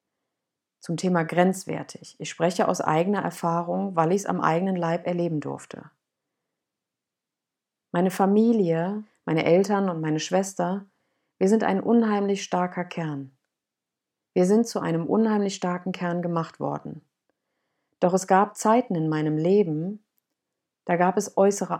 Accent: German